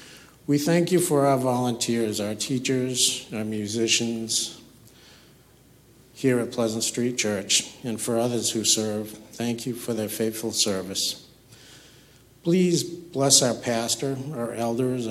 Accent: American